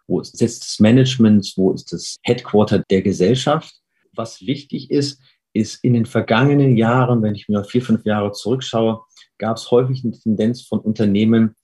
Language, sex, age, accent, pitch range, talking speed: German, male, 40-59, German, 105-120 Hz, 170 wpm